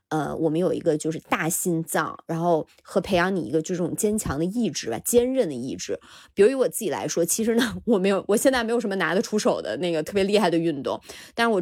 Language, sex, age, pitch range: Chinese, female, 20-39, 165-220 Hz